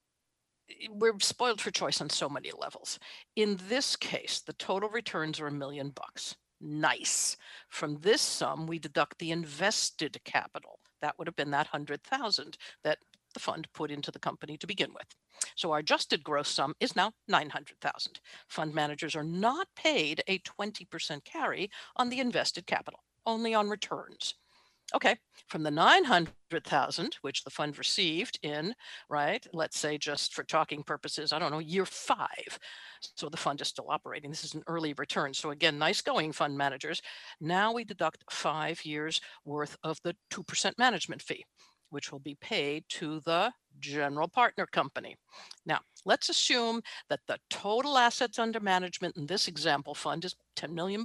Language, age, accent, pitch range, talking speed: English, 60-79, American, 150-210 Hz, 165 wpm